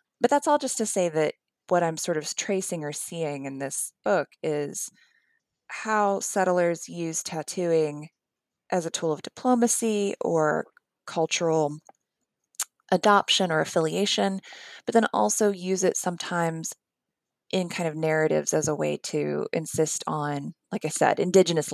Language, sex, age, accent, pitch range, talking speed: English, female, 20-39, American, 155-200 Hz, 145 wpm